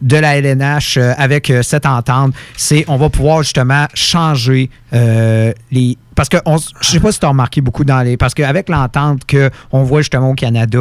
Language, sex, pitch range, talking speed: French, male, 125-150 Hz, 210 wpm